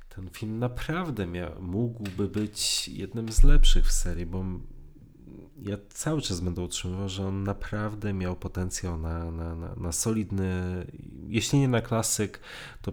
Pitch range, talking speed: 85-105 Hz, 145 wpm